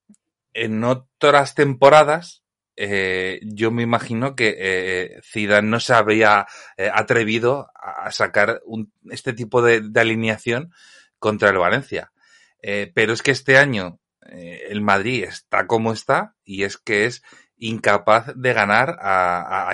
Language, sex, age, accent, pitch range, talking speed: Spanish, male, 30-49, Spanish, 100-130 Hz, 140 wpm